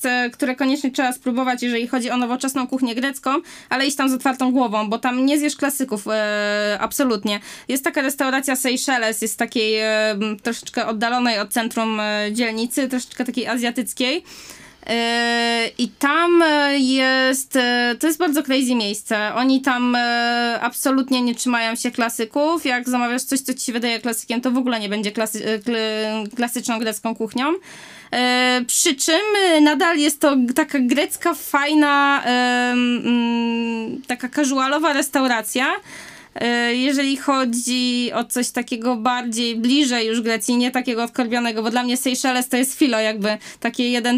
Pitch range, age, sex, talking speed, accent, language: 230-265 Hz, 20-39, female, 135 wpm, native, Polish